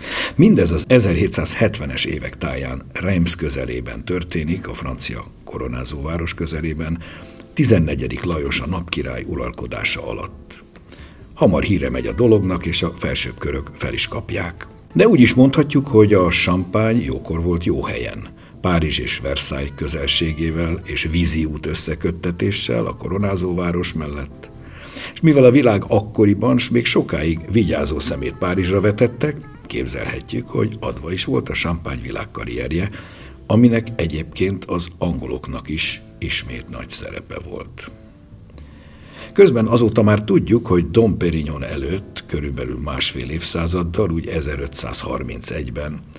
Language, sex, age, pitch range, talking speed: Hungarian, male, 60-79, 75-110 Hz, 120 wpm